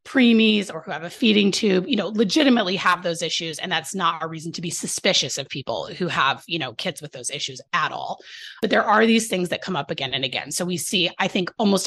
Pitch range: 155-205 Hz